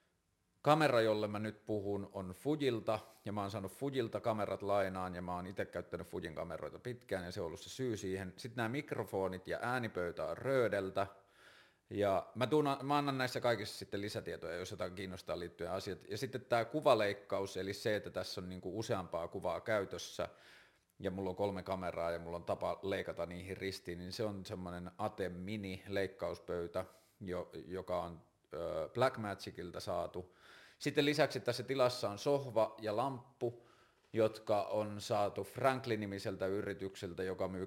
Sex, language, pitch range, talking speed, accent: male, Finnish, 95-115 Hz, 160 wpm, native